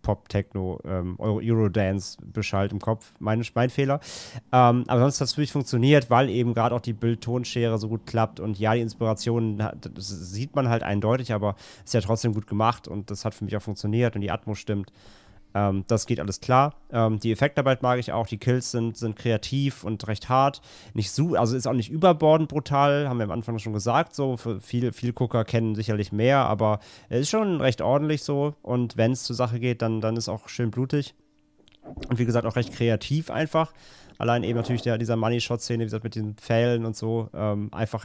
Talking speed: 210 wpm